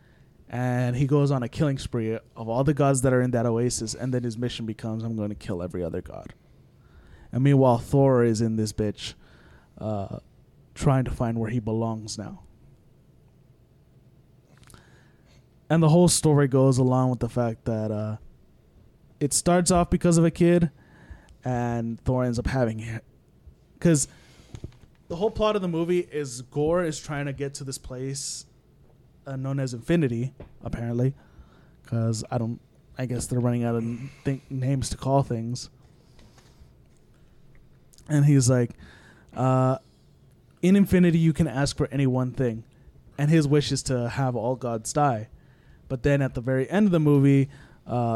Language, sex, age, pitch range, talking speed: English, male, 20-39, 115-140 Hz, 165 wpm